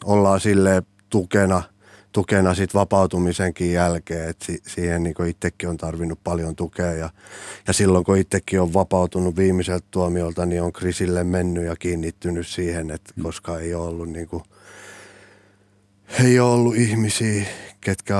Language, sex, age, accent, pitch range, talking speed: Finnish, male, 30-49, native, 85-100 Hz, 130 wpm